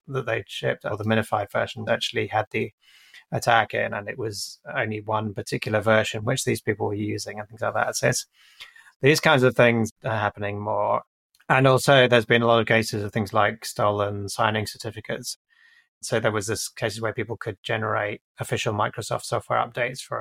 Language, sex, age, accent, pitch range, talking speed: English, male, 20-39, British, 110-125 Hz, 195 wpm